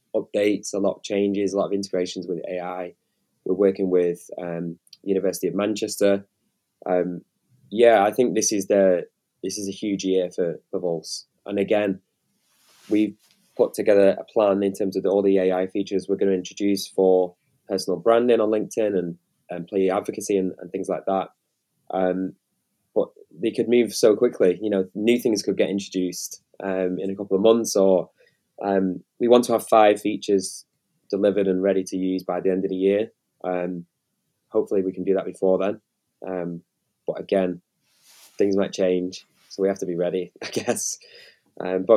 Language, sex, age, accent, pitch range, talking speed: English, male, 20-39, British, 95-105 Hz, 185 wpm